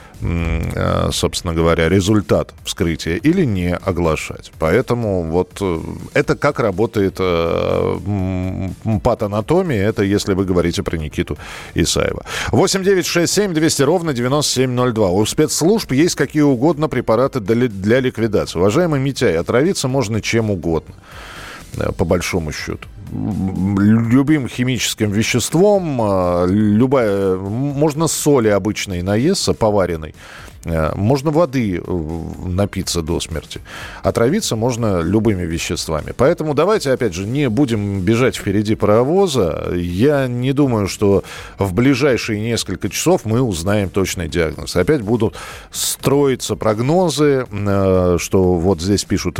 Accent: native